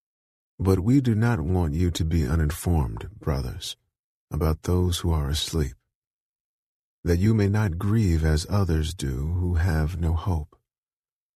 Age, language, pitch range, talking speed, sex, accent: 40-59, English, 80-100 Hz, 145 wpm, male, American